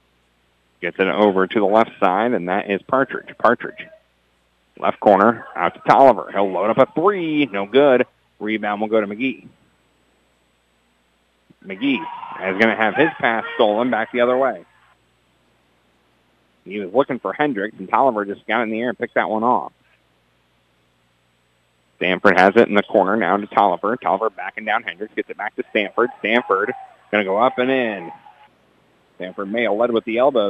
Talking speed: 175 wpm